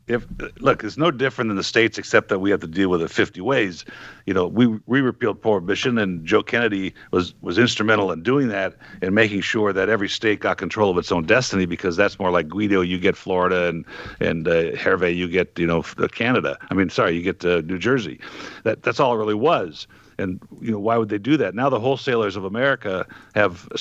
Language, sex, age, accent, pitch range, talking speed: English, male, 60-79, American, 100-135 Hz, 230 wpm